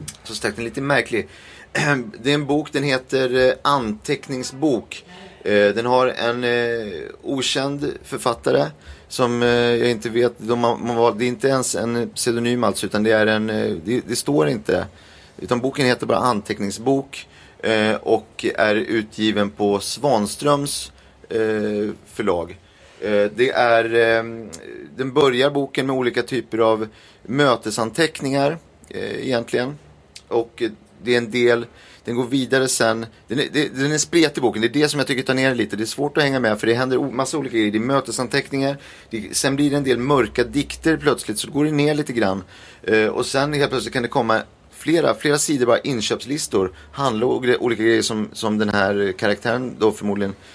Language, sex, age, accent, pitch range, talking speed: English, male, 30-49, Swedish, 105-135 Hz, 160 wpm